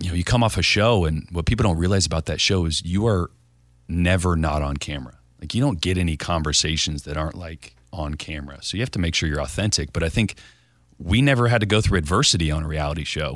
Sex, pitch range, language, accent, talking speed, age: male, 80-105 Hz, English, American, 245 wpm, 30-49